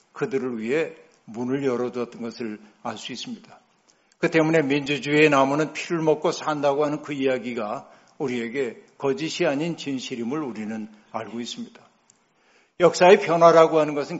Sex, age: male, 60-79